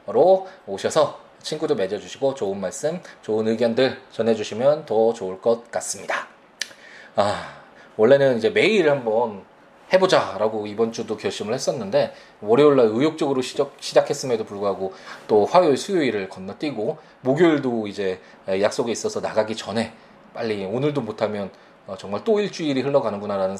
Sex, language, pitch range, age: male, Korean, 105-150 Hz, 20-39